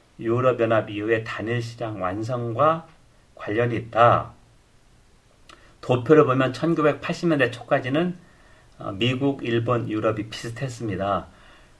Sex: male